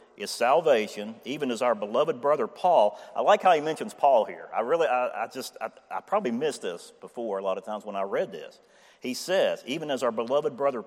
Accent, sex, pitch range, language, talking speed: American, male, 110-165 Hz, English, 225 wpm